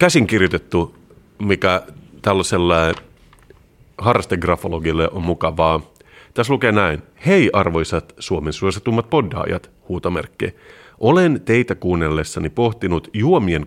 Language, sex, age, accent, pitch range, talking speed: Finnish, male, 30-49, native, 90-115 Hz, 90 wpm